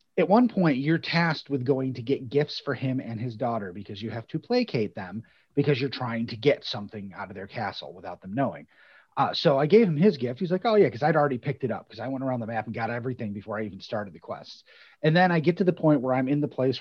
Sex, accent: male, American